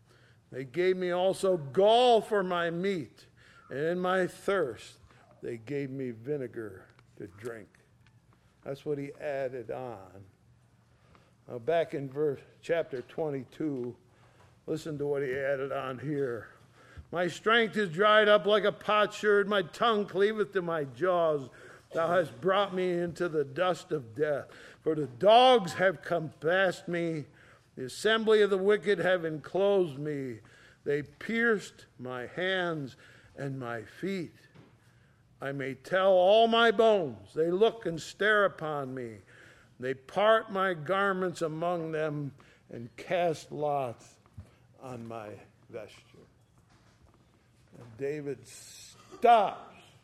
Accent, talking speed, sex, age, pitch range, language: American, 130 wpm, male, 50-69, 125-185 Hz, English